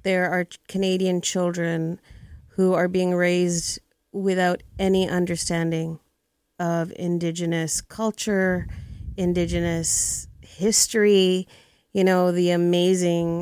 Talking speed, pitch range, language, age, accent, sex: 90 wpm, 170-195 Hz, English, 30-49, American, female